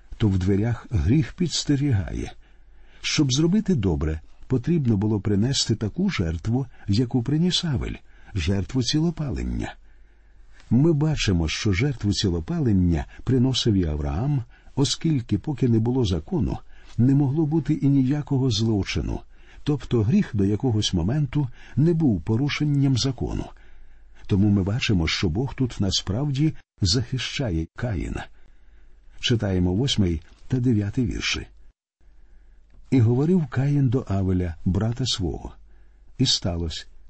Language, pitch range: Ukrainian, 85-130 Hz